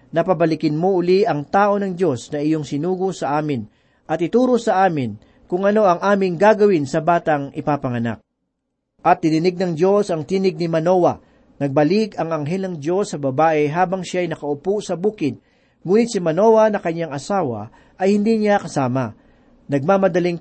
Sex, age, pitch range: male, 40-59, 155-205 Hz